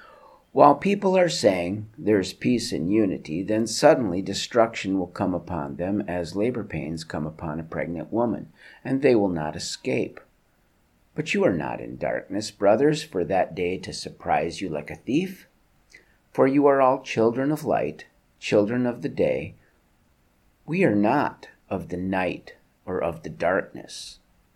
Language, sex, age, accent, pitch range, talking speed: English, male, 50-69, American, 90-135 Hz, 160 wpm